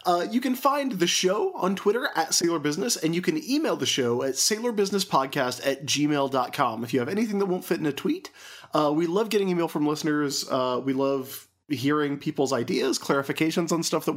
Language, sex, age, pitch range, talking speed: English, male, 30-49, 135-185 Hz, 205 wpm